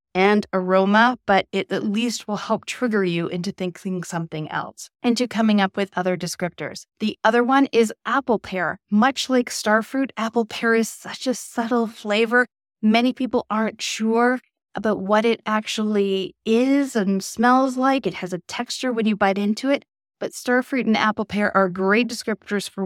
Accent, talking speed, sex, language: American, 175 wpm, female, English